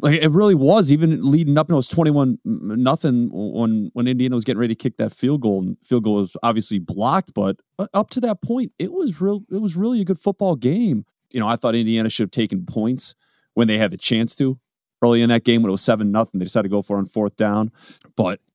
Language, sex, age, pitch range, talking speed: English, male, 30-49, 100-130 Hz, 250 wpm